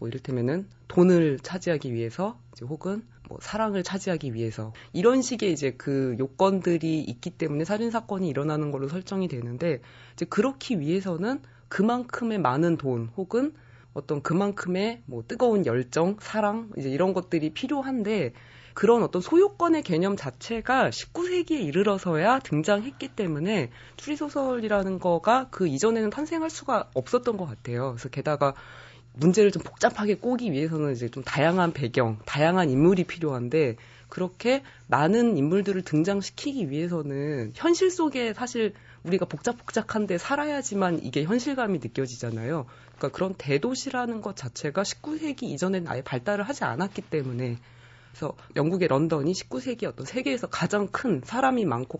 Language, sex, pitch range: Korean, female, 140-225 Hz